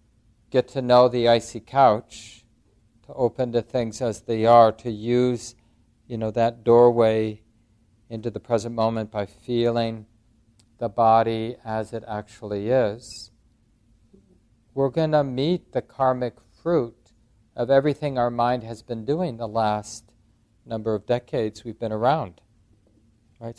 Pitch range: 110-120 Hz